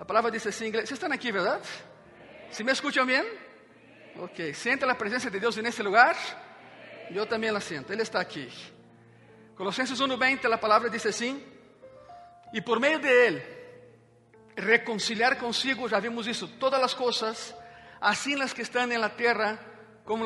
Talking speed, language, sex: 165 wpm, Spanish, male